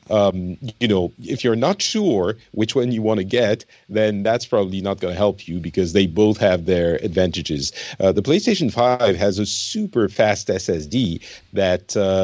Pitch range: 95-120 Hz